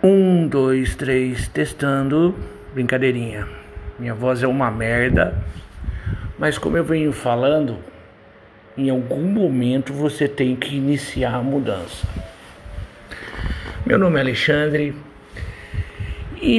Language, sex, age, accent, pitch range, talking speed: Portuguese, male, 60-79, Brazilian, 125-165 Hz, 105 wpm